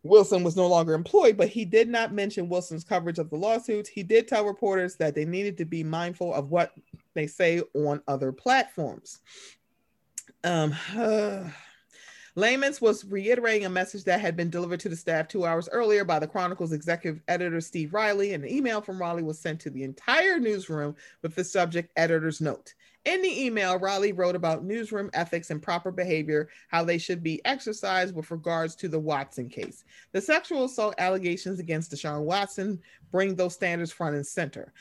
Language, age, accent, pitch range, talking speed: English, 40-59, American, 160-205 Hz, 185 wpm